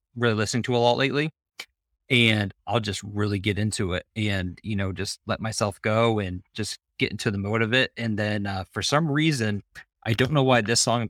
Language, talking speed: English, 220 wpm